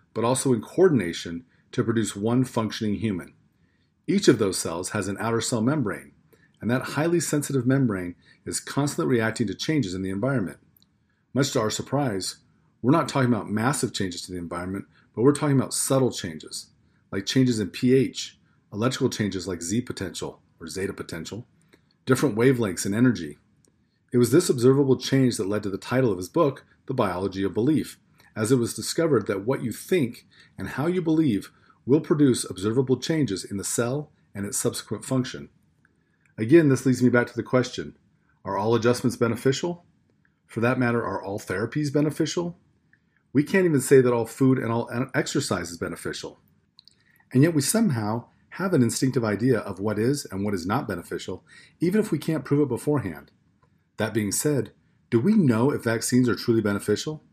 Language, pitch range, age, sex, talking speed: English, 105-140 Hz, 40-59, male, 180 wpm